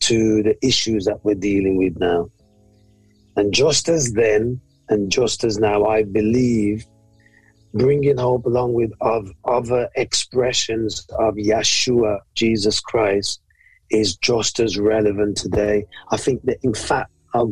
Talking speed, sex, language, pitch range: 135 wpm, male, English, 105-125 Hz